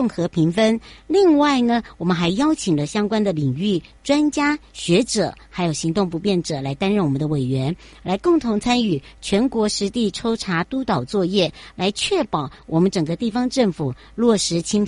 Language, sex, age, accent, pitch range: Chinese, male, 60-79, American, 170-240 Hz